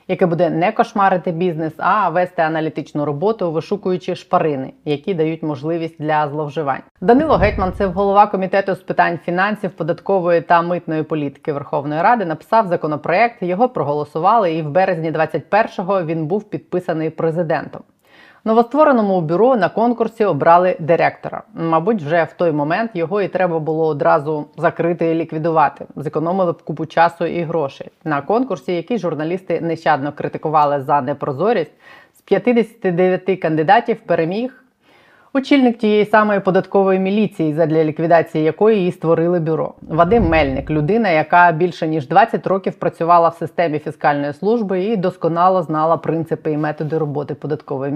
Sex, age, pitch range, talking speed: female, 20-39, 160-195 Hz, 140 wpm